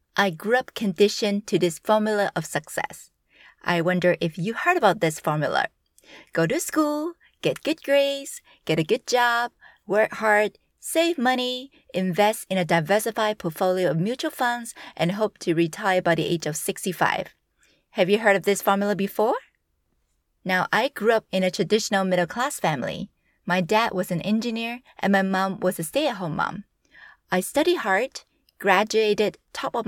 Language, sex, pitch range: English, female, 175-235 Hz